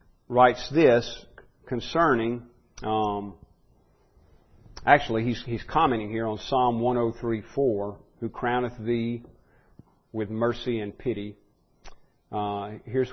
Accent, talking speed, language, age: American, 95 wpm, English, 50-69